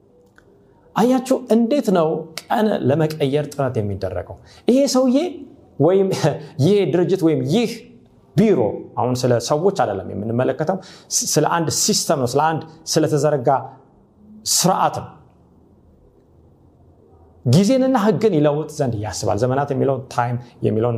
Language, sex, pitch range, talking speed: Amharic, male, 115-170 Hz, 110 wpm